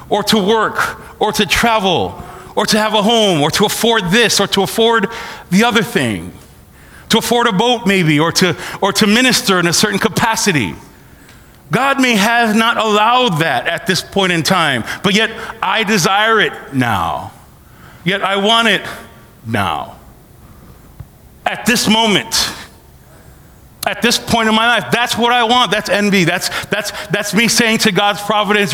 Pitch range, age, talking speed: 185-225 Hz, 40-59, 165 wpm